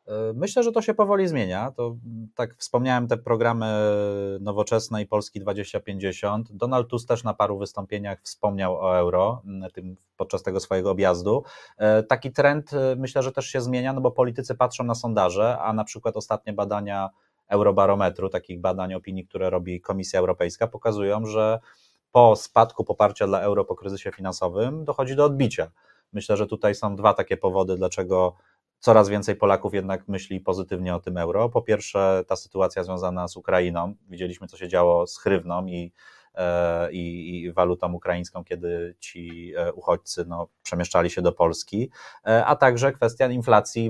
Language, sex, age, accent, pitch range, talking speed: Polish, male, 30-49, native, 95-120 Hz, 155 wpm